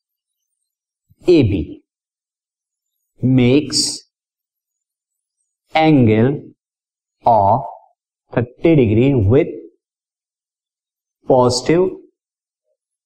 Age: 50-69